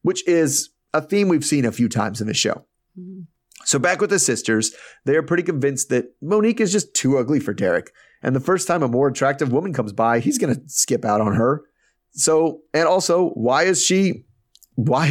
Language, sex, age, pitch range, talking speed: English, male, 30-49, 115-165 Hz, 210 wpm